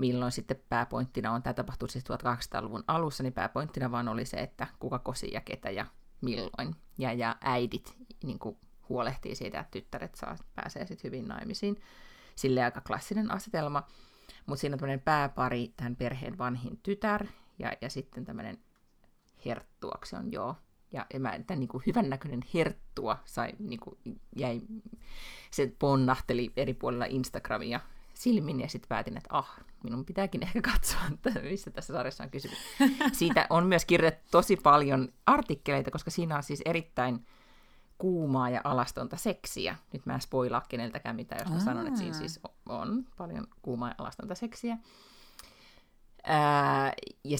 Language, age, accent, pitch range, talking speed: Finnish, 30-49, native, 125-175 Hz, 145 wpm